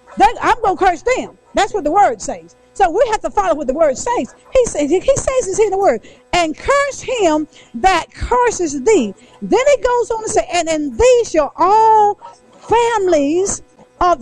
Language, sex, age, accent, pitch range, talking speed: English, female, 50-69, American, 250-375 Hz, 205 wpm